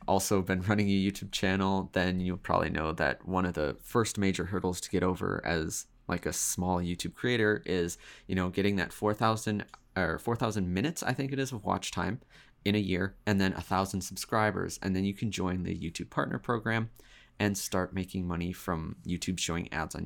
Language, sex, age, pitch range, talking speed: English, male, 20-39, 90-105 Hz, 200 wpm